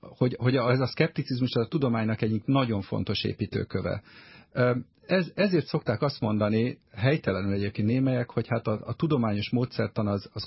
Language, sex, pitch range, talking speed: Hungarian, male, 105-130 Hz, 155 wpm